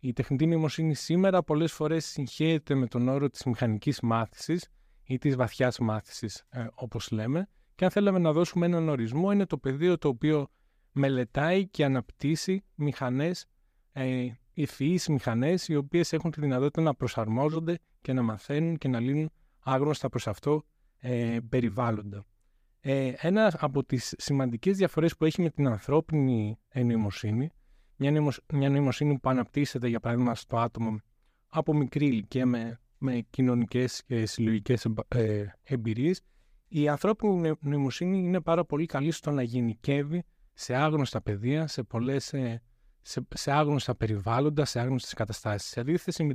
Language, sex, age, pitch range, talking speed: Greek, male, 20-39, 120-155 Hz, 140 wpm